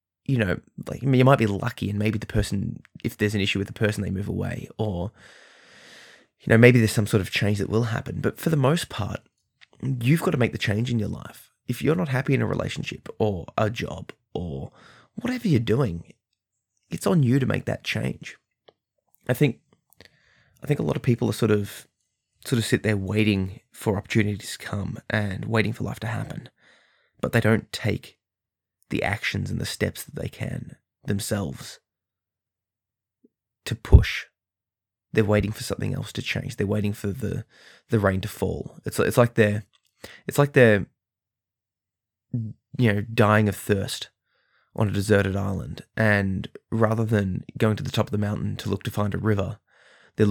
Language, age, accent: English, 20-39, Australian